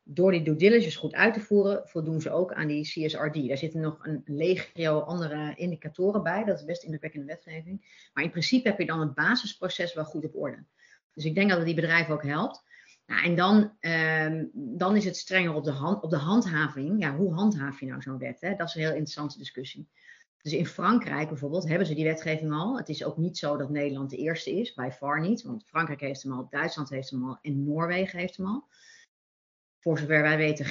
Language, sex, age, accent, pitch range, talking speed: Dutch, female, 30-49, Dutch, 155-200 Hz, 235 wpm